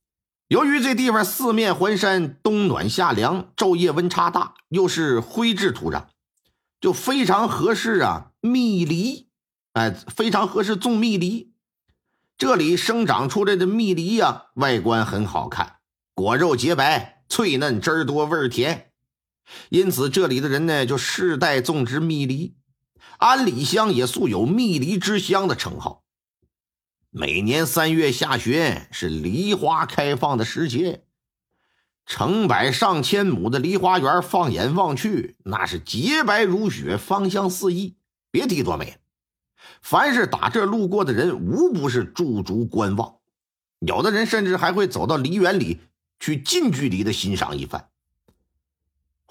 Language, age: Chinese, 50-69